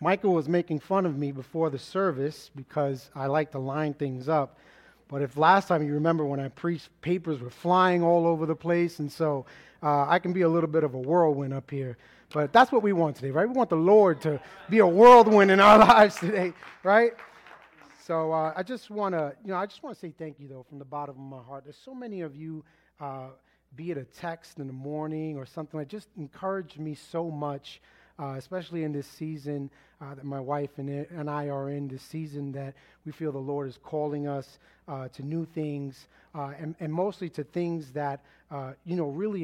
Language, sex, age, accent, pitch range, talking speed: English, male, 30-49, American, 140-170 Hz, 225 wpm